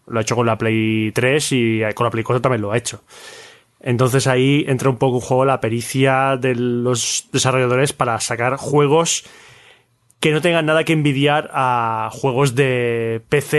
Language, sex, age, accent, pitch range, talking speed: Spanish, male, 20-39, Spanish, 120-155 Hz, 180 wpm